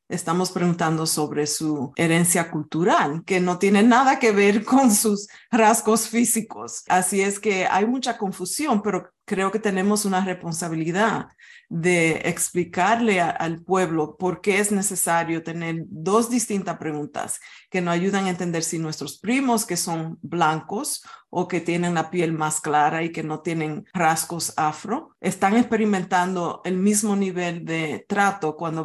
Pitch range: 165-195 Hz